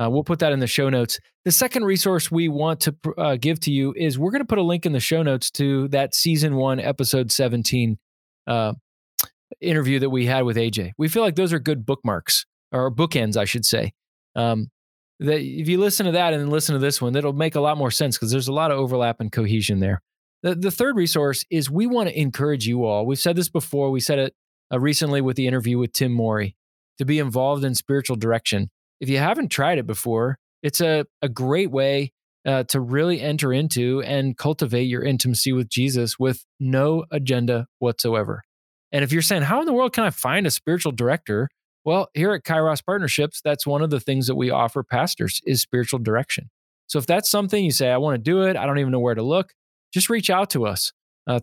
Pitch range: 125-155 Hz